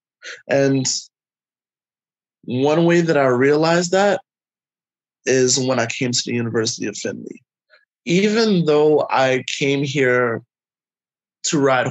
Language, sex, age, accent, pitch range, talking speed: English, male, 20-39, American, 120-150 Hz, 115 wpm